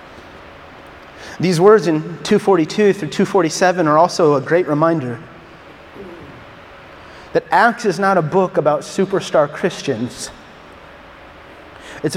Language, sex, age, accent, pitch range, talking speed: English, male, 30-49, American, 185-255 Hz, 105 wpm